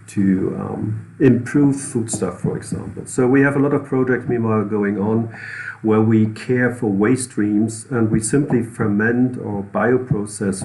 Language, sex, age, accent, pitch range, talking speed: English, male, 50-69, German, 100-115 Hz, 160 wpm